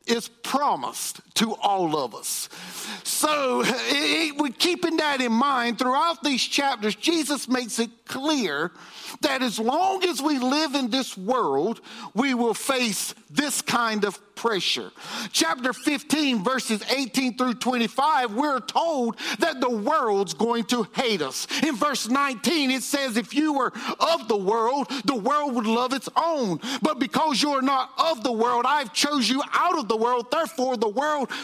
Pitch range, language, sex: 235-300 Hz, English, male